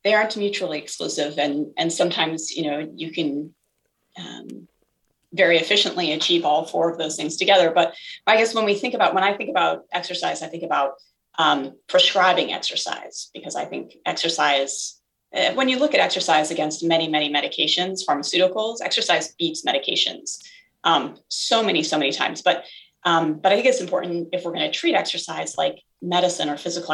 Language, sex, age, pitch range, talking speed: English, female, 30-49, 160-195 Hz, 180 wpm